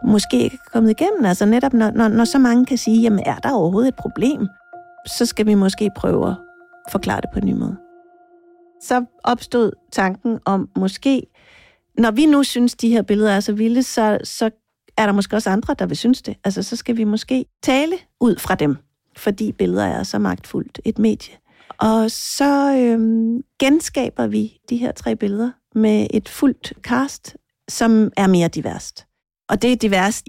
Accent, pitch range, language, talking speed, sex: native, 200-255 Hz, Danish, 180 wpm, female